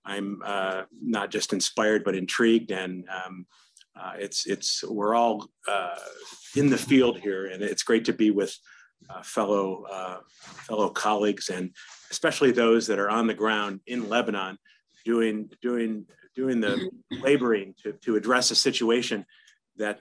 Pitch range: 105-130 Hz